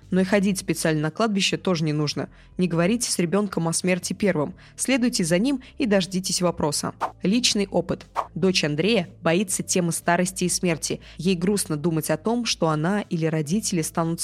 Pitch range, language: 165-220 Hz, Russian